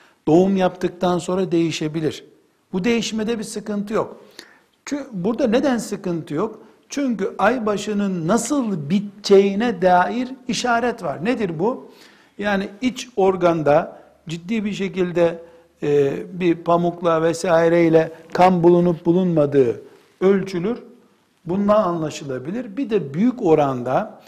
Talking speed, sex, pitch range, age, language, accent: 105 wpm, male, 165-225 Hz, 60-79, Turkish, native